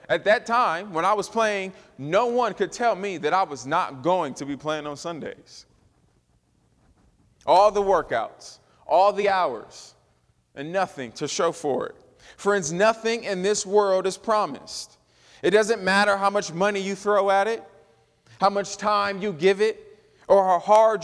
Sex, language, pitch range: male, English, 180-220 Hz